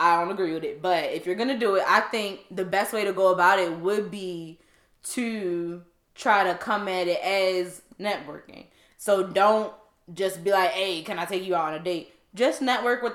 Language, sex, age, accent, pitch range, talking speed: English, female, 10-29, American, 165-205 Hz, 220 wpm